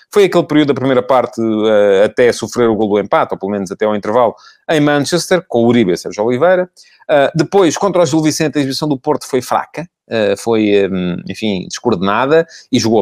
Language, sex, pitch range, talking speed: Portuguese, male, 105-145 Hz, 210 wpm